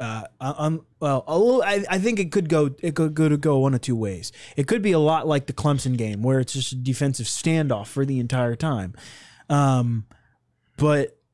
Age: 20-39